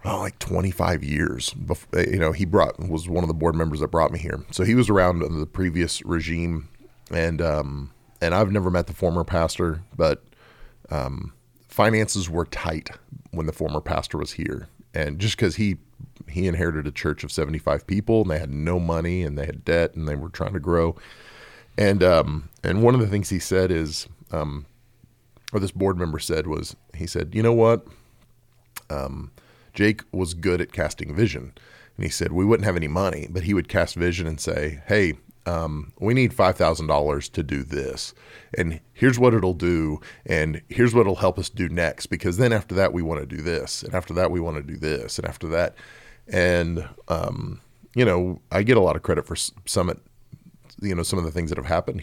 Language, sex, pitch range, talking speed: English, male, 80-95 Hz, 210 wpm